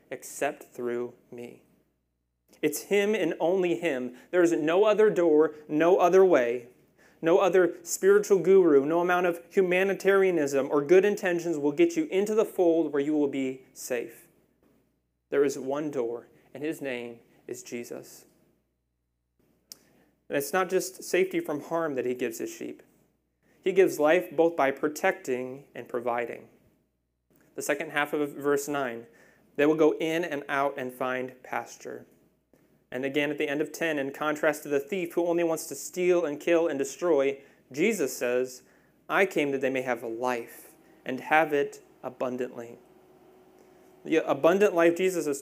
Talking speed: 160 wpm